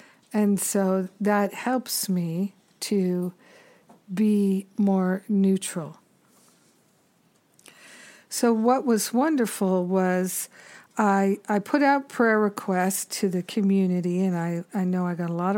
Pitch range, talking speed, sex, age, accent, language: 185-215 Hz, 120 wpm, female, 50-69, American, English